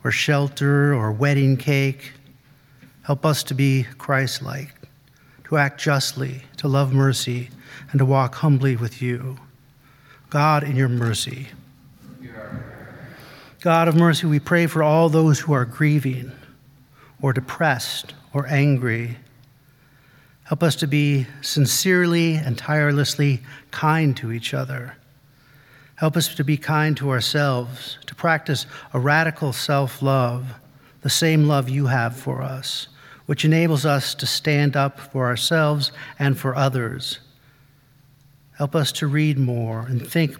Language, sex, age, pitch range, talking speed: English, male, 50-69, 135-145 Hz, 135 wpm